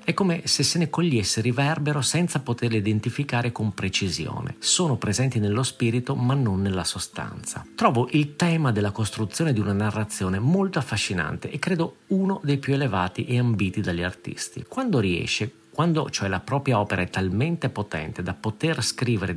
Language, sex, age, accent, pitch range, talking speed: Italian, male, 50-69, native, 100-140 Hz, 165 wpm